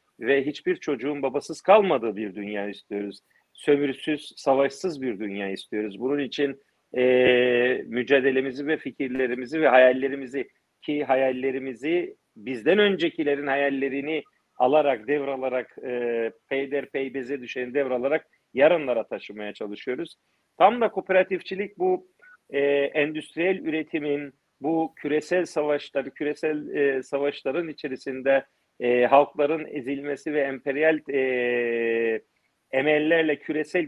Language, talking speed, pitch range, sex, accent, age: Turkish, 105 wpm, 130-160 Hz, male, native, 50-69